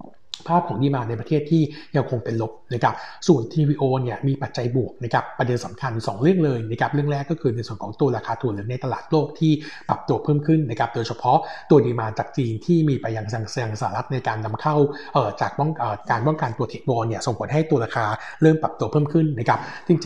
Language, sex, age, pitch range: Thai, male, 60-79, 115-150 Hz